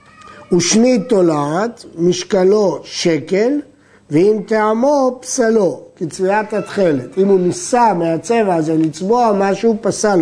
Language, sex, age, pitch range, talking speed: Hebrew, male, 50-69, 170-220 Hz, 105 wpm